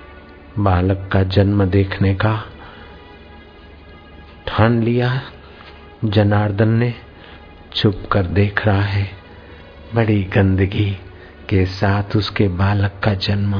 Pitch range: 95-110 Hz